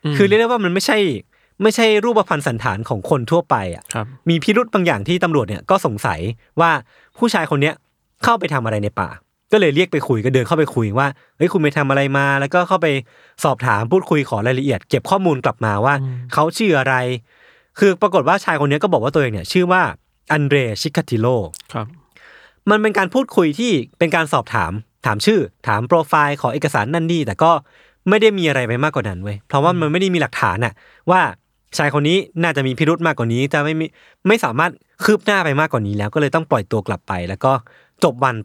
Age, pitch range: 20-39, 125-180 Hz